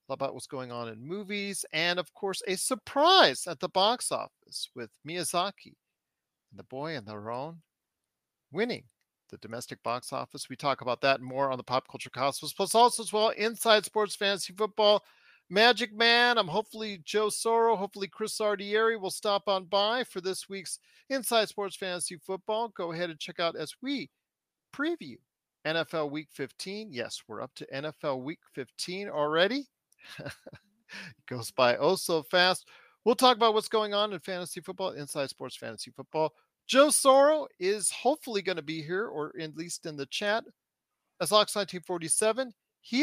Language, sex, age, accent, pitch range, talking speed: English, male, 40-59, American, 155-220 Hz, 170 wpm